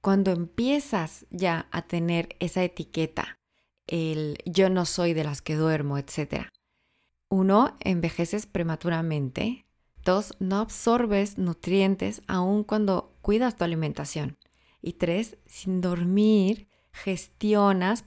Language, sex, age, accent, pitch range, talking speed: Spanish, female, 20-39, Mexican, 170-210 Hz, 110 wpm